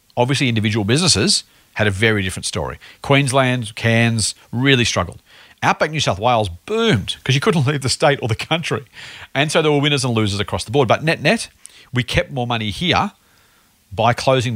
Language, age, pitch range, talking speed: English, 40-59, 100-125 Hz, 185 wpm